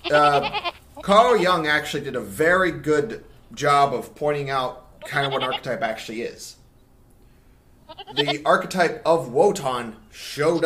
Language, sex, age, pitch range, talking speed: English, male, 30-49, 130-165 Hz, 130 wpm